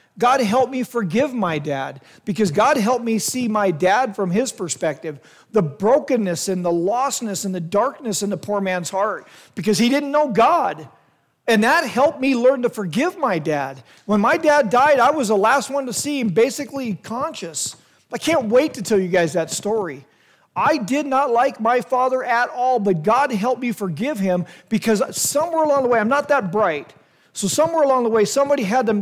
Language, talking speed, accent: English, 200 wpm, American